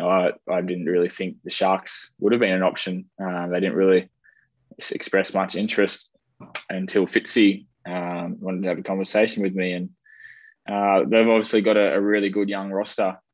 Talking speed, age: 180 wpm, 20-39